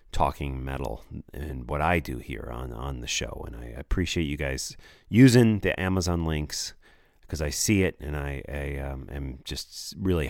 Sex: male